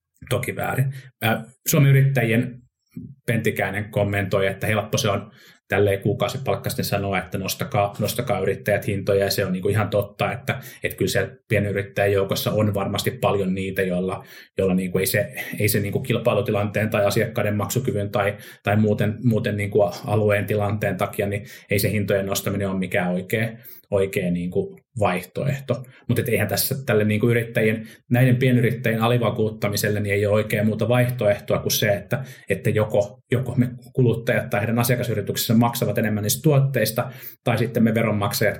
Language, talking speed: Finnish, 155 wpm